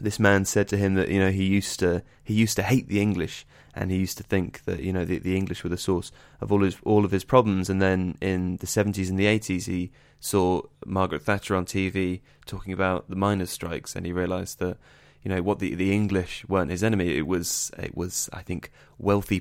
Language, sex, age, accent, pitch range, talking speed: English, male, 20-39, British, 85-100 Hz, 240 wpm